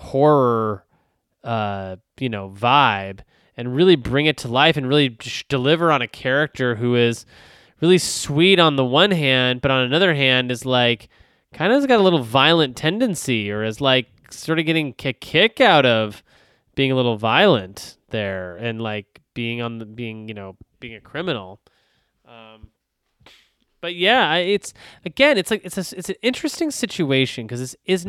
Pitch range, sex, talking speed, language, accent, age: 115-165 Hz, male, 175 wpm, English, American, 20-39